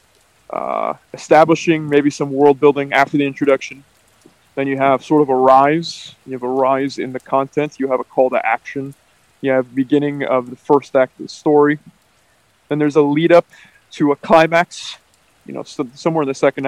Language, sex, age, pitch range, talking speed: English, male, 20-39, 130-150 Hz, 200 wpm